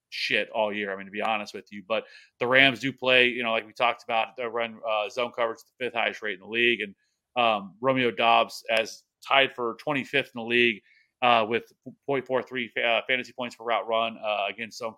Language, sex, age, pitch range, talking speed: English, male, 30-49, 115-130 Hz, 225 wpm